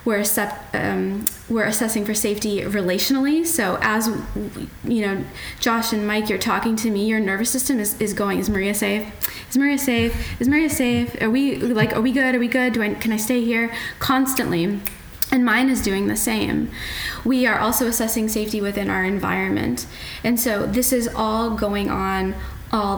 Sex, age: female, 20-39